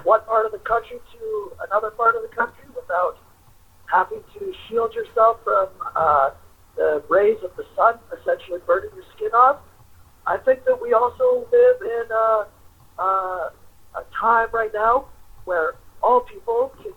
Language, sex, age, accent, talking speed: English, male, 50-69, American, 155 wpm